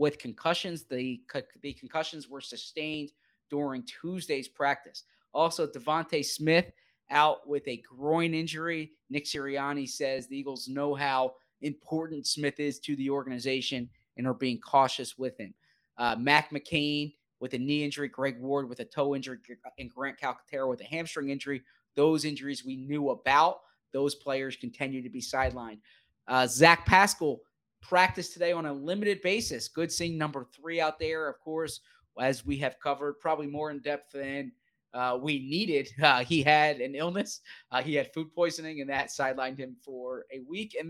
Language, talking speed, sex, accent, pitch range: English, 170 wpm, male, American, 135-170 Hz